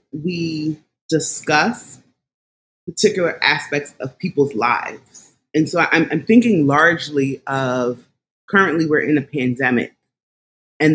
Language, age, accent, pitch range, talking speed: English, 30-49, American, 140-175 Hz, 110 wpm